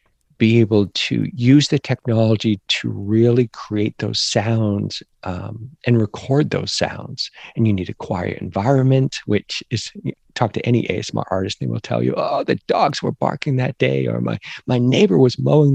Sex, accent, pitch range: male, American, 105-125 Hz